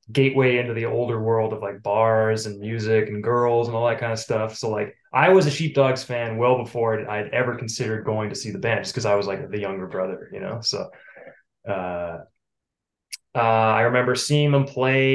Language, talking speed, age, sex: English, 210 wpm, 20-39, male